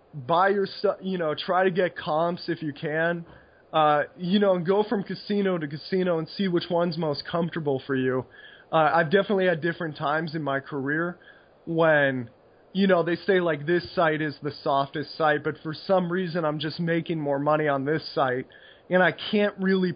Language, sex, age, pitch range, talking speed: English, male, 20-39, 150-185 Hz, 200 wpm